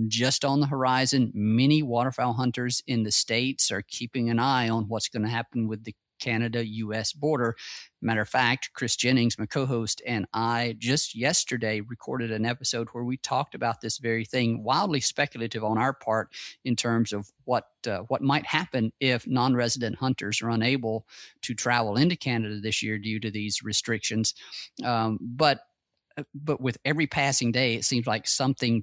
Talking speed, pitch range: 175 wpm, 115-135 Hz